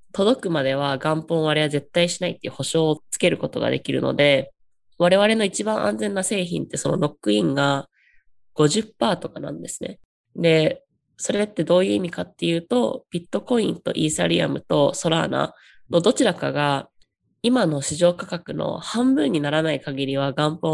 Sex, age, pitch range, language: female, 20-39, 140-185 Hz, Japanese